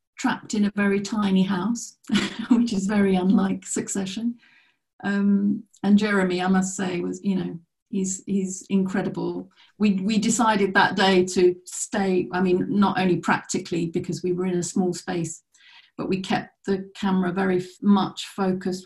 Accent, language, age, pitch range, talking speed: British, English, 40-59, 175-200 Hz, 160 wpm